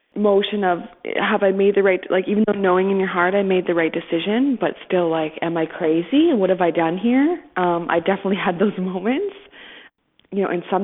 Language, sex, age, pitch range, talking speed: English, female, 20-39, 165-200 Hz, 225 wpm